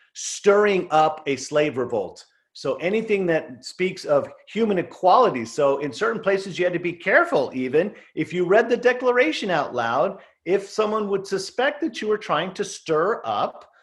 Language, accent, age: English, American, 40-59